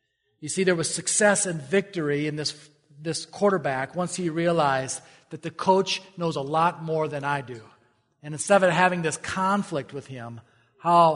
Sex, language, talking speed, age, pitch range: male, English, 175 wpm, 40-59, 150-205 Hz